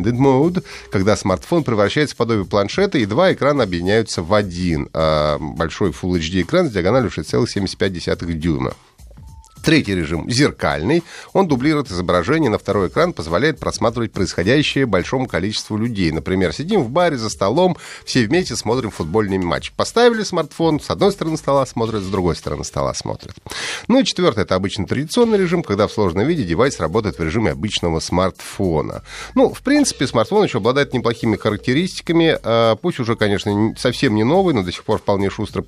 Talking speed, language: 160 wpm, Russian